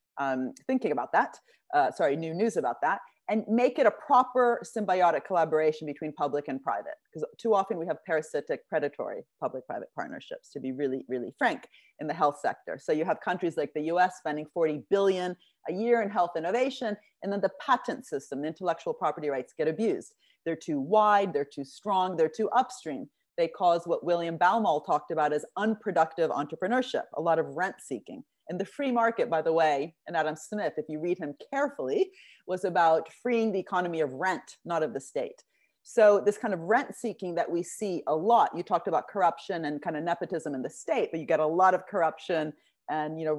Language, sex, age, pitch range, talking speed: English, female, 30-49, 155-220 Hz, 200 wpm